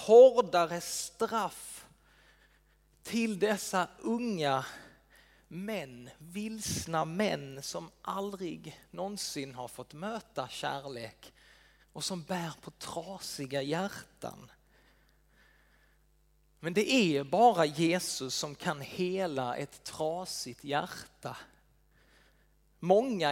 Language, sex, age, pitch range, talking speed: Swedish, male, 30-49, 150-205 Hz, 85 wpm